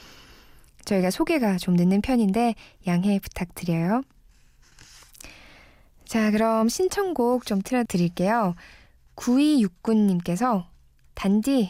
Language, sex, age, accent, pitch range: Korean, female, 20-39, native, 175-220 Hz